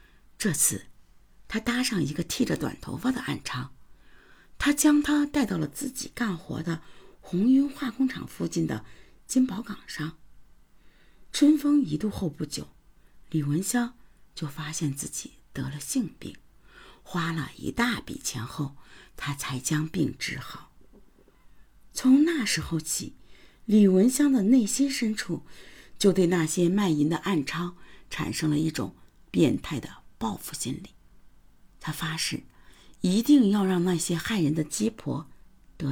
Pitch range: 155-235 Hz